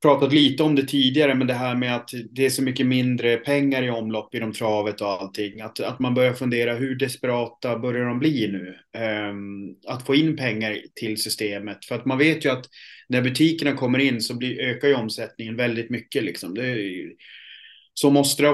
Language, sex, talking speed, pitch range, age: Swedish, male, 205 wpm, 110-130 Hz, 30-49